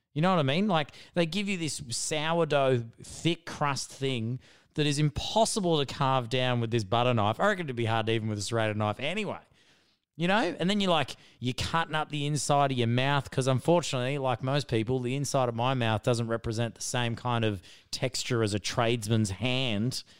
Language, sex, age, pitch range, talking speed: English, male, 30-49, 115-145 Hz, 210 wpm